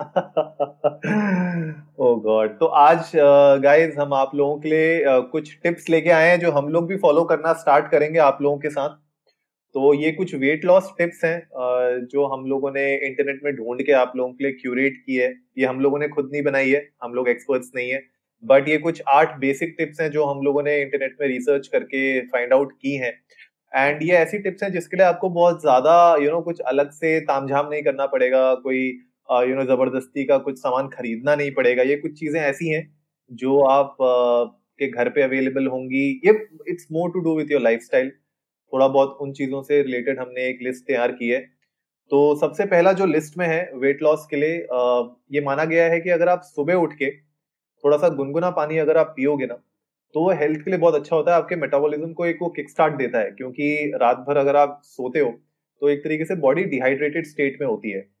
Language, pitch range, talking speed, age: Hindi, 135-160 Hz, 185 wpm, 20-39